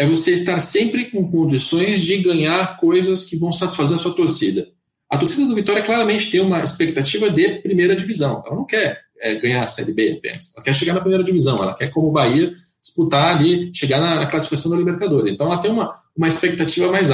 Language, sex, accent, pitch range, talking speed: Portuguese, male, Brazilian, 135-175 Hz, 205 wpm